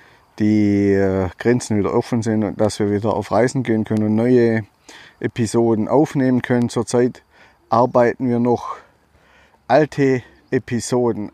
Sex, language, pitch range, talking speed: male, German, 105-125 Hz, 125 wpm